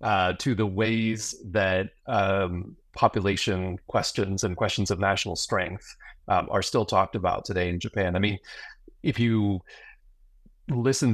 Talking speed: 135 wpm